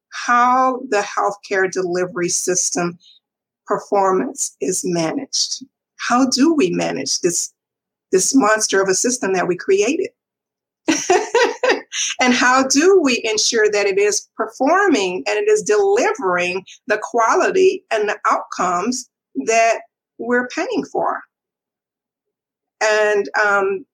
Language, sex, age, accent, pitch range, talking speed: English, female, 50-69, American, 195-285 Hz, 115 wpm